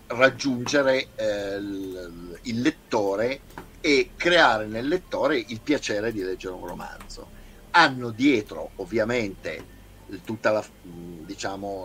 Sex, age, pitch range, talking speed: male, 50-69, 100-130 Hz, 100 wpm